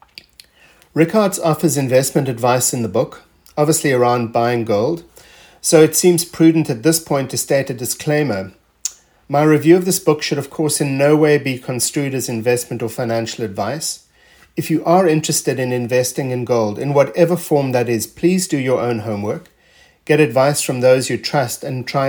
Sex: male